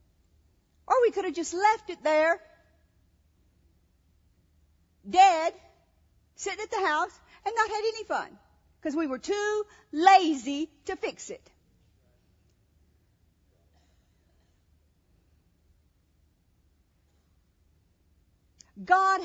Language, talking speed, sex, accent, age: English, 85 wpm, female, American, 50-69